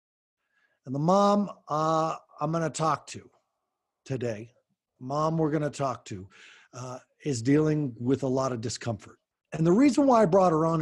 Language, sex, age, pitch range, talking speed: English, male, 50-69, 145-210 Hz, 175 wpm